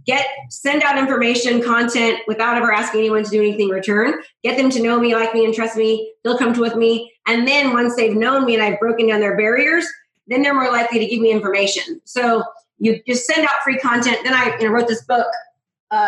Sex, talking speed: female, 230 wpm